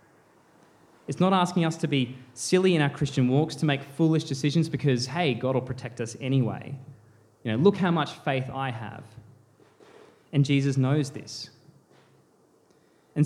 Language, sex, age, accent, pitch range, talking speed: English, male, 20-39, Australian, 115-165 Hz, 160 wpm